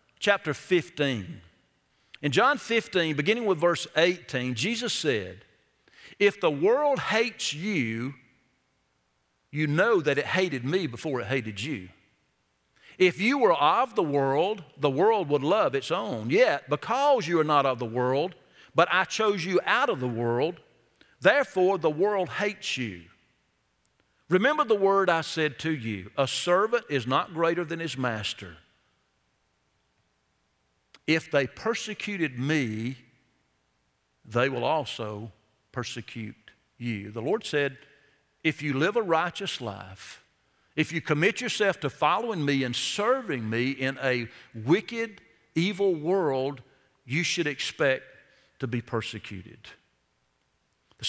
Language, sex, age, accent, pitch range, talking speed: English, male, 50-69, American, 115-180 Hz, 135 wpm